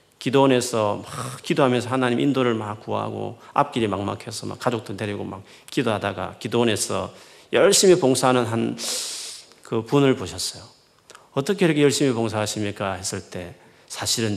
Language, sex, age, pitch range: Korean, male, 40-59, 105-170 Hz